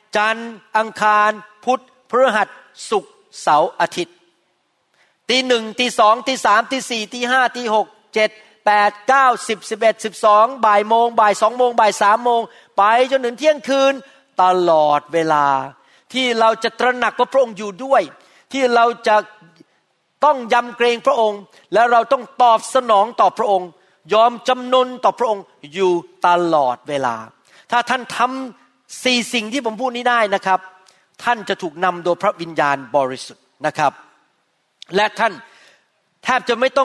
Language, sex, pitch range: Thai, male, 200-260 Hz